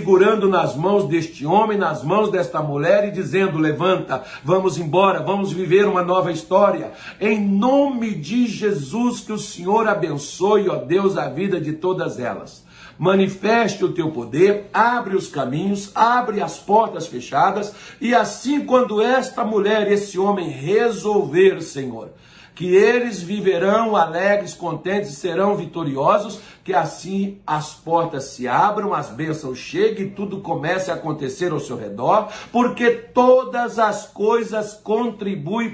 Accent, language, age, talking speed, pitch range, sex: Brazilian, Portuguese, 60-79, 140 wpm, 170-215 Hz, male